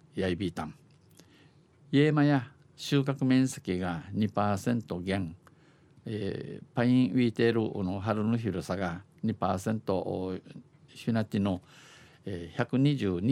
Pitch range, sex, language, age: 100-135 Hz, male, Japanese, 50-69